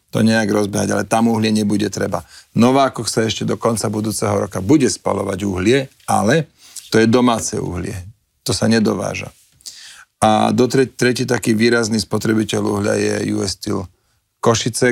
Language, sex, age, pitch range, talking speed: Slovak, male, 40-59, 105-120 Hz, 155 wpm